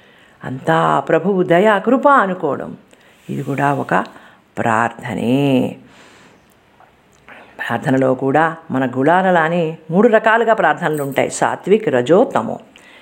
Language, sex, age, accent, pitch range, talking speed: Telugu, female, 50-69, native, 135-200 Hz, 90 wpm